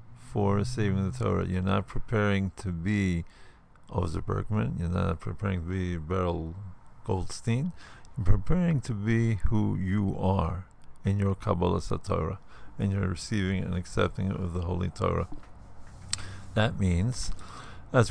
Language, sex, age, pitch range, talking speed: English, male, 50-69, 90-105 Hz, 135 wpm